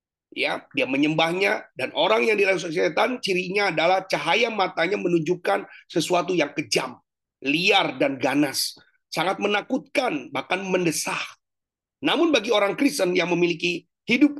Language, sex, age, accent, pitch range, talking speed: Indonesian, male, 30-49, native, 160-245 Hz, 125 wpm